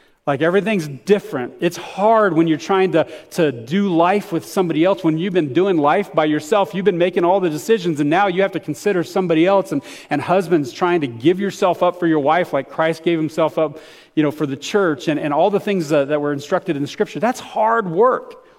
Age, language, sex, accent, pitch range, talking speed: 40-59, English, male, American, 160-210 Hz, 230 wpm